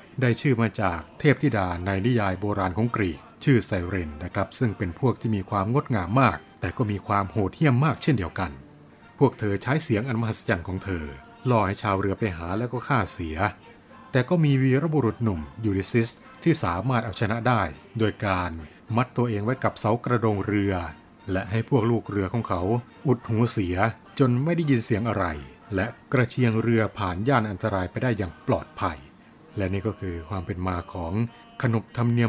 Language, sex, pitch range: Thai, male, 95-120 Hz